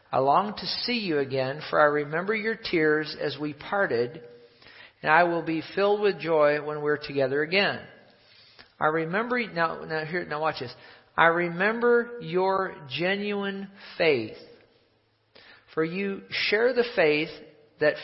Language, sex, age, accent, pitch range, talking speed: English, male, 50-69, American, 150-185 Hz, 145 wpm